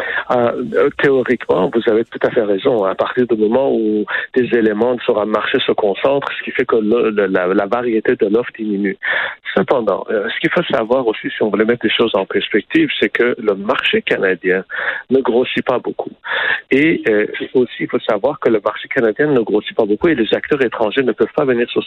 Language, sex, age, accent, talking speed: French, male, 60-79, French, 210 wpm